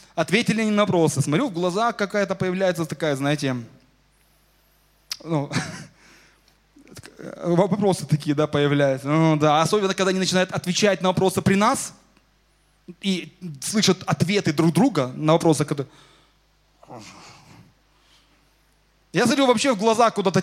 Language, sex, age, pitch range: Russian, male, 20-39, 155-195 Hz